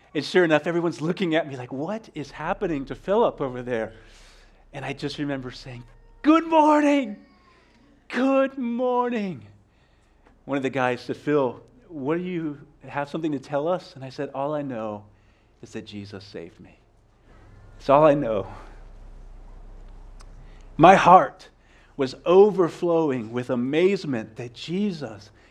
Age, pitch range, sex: 40-59, 130-195 Hz, male